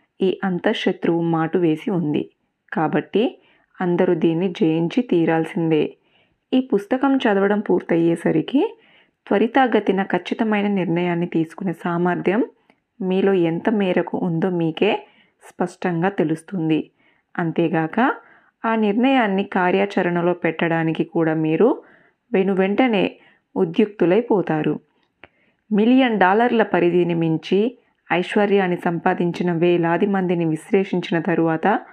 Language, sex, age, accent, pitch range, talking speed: Telugu, female, 20-39, native, 175-215 Hz, 85 wpm